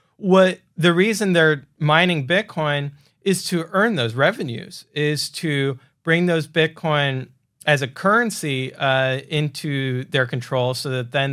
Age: 40-59